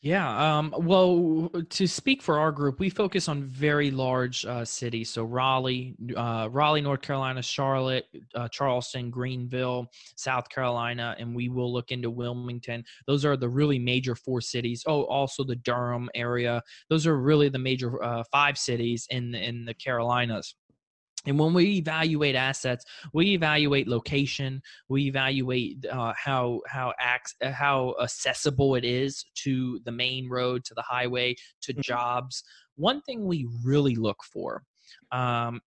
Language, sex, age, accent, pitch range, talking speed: English, male, 20-39, American, 120-135 Hz, 155 wpm